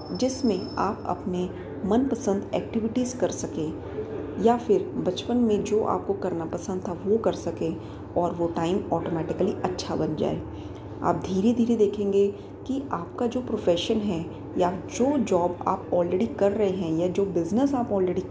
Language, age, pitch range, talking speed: Hindi, 20-39, 170-220 Hz, 155 wpm